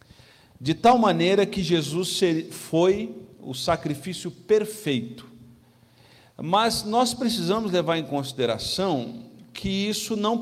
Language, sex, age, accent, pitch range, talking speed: Portuguese, male, 50-69, Brazilian, 145-195 Hz, 105 wpm